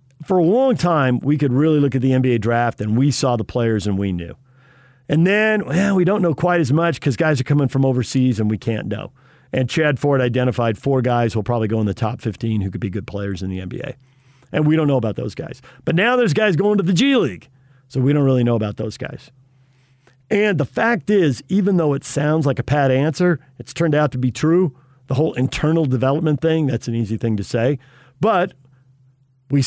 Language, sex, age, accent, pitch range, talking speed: English, male, 50-69, American, 125-150 Hz, 235 wpm